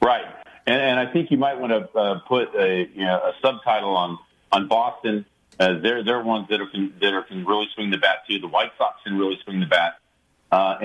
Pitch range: 95-130 Hz